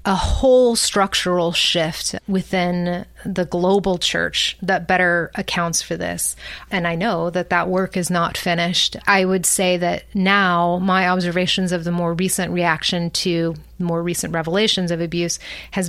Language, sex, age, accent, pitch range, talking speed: English, female, 30-49, American, 170-190 Hz, 155 wpm